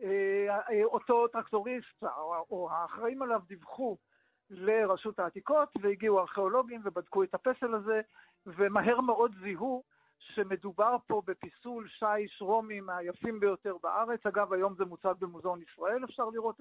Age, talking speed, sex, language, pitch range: 60-79, 120 wpm, male, Hebrew, 195-235 Hz